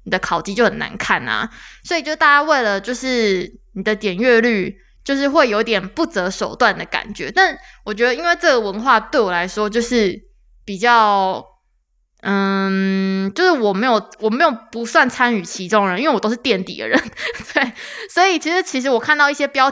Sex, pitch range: female, 200-265 Hz